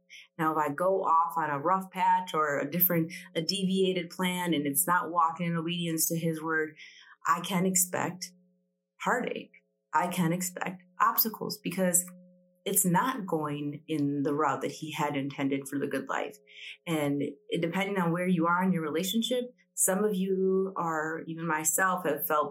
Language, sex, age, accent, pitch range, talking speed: English, female, 30-49, American, 160-190 Hz, 170 wpm